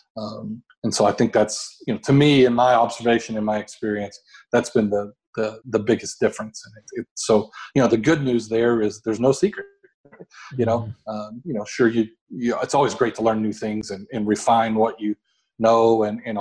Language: English